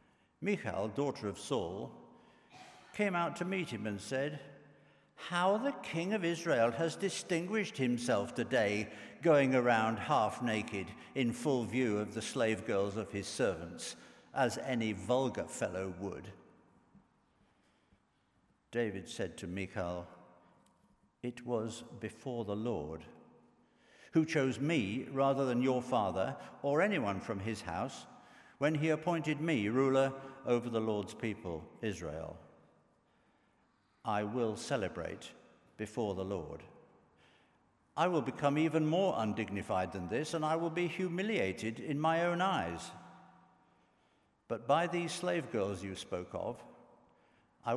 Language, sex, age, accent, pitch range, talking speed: English, male, 60-79, British, 100-155 Hz, 130 wpm